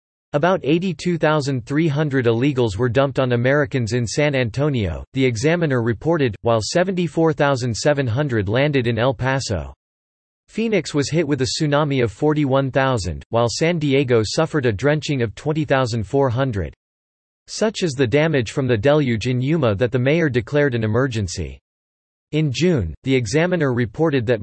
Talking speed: 140 wpm